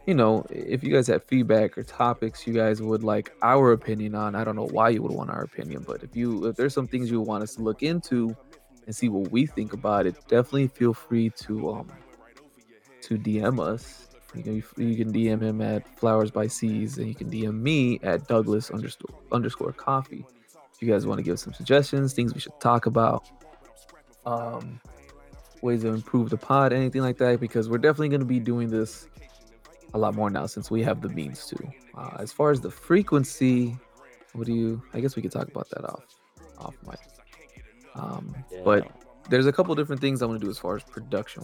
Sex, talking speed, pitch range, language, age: male, 215 wpm, 110-130 Hz, English, 20-39